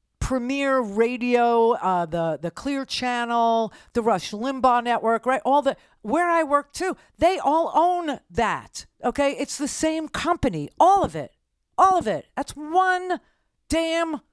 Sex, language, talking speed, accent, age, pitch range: female, English, 150 wpm, American, 50-69, 205-280 Hz